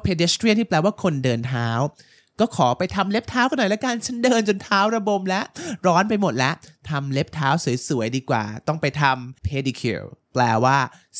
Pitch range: 145-200 Hz